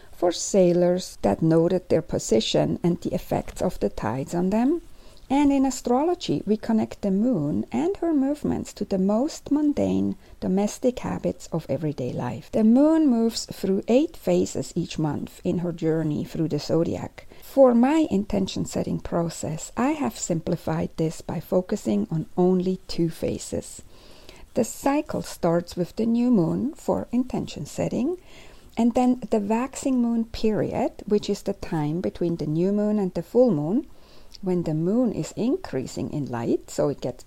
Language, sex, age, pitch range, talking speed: English, female, 60-79, 165-245 Hz, 160 wpm